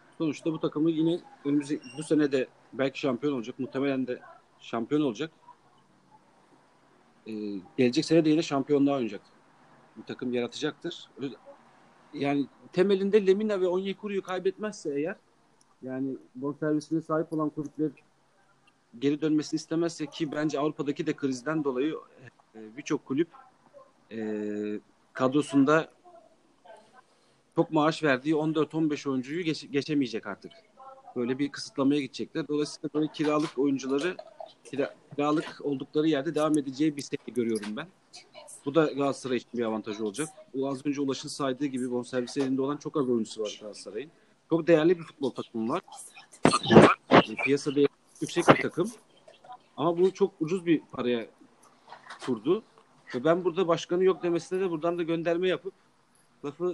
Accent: native